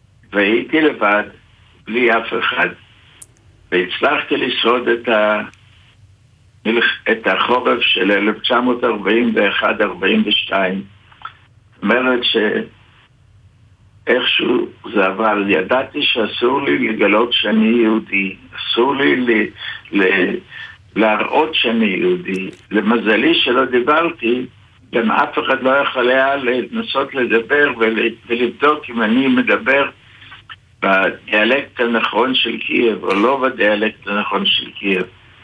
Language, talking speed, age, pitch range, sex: English, 65 wpm, 60-79, 105-130 Hz, male